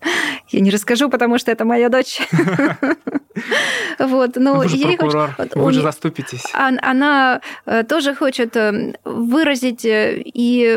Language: Russian